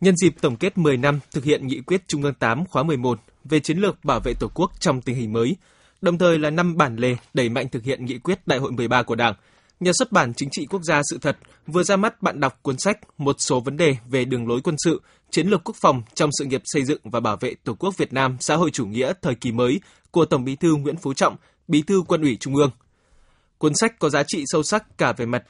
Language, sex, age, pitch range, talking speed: Vietnamese, male, 20-39, 130-175 Hz, 270 wpm